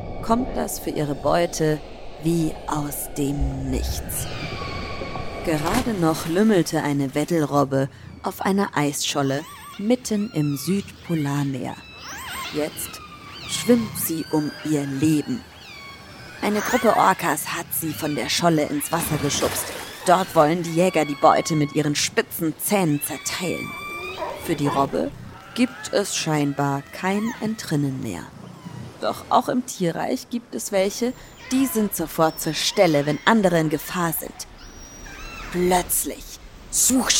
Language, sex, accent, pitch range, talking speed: German, female, German, 150-210 Hz, 120 wpm